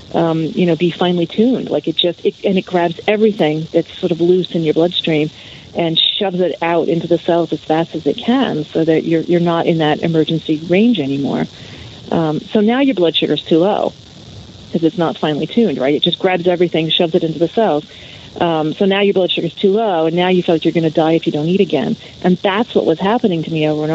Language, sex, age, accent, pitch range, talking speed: English, female, 40-59, American, 160-195 Hz, 245 wpm